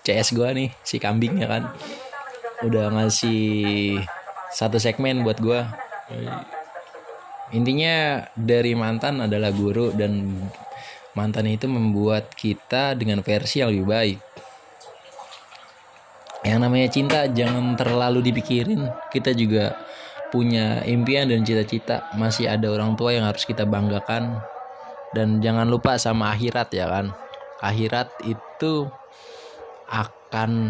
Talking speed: 115 wpm